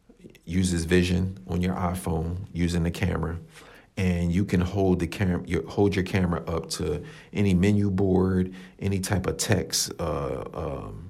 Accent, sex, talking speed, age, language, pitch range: American, male, 155 wpm, 50-69, English, 85-95 Hz